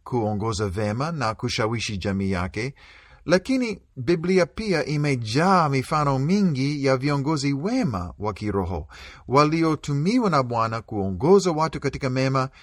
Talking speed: 120 wpm